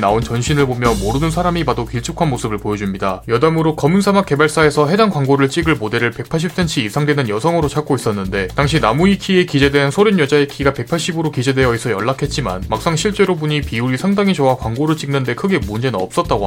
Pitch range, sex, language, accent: 120-170 Hz, male, Korean, native